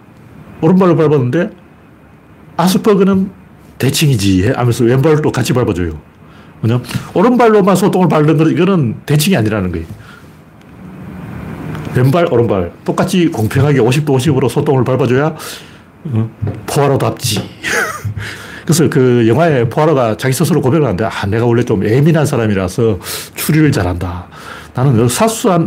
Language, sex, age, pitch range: Korean, male, 40-59, 110-160 Hz